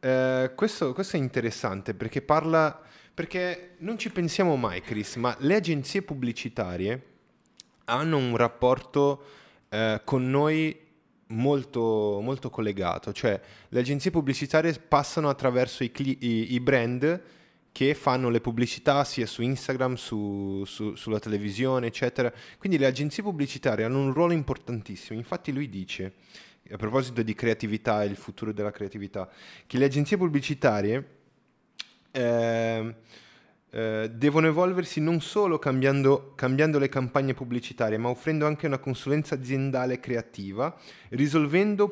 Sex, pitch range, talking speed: male, 115-155 Hz, 130 wpm